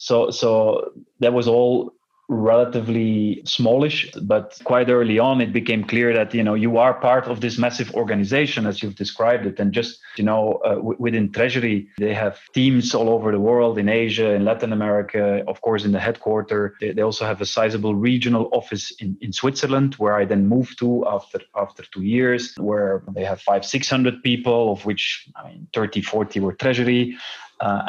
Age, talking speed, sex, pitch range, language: 30-49, 190 wpm, male, 105-125 Hz, English